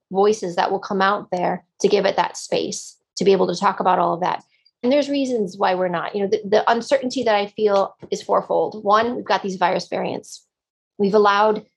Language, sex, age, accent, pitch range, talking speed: English, female, 30-49, American, 185-215 Hz, 225 wpm